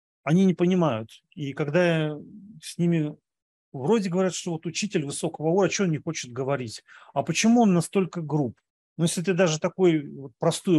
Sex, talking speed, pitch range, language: male, 180 wpm, 145-185 Hz, English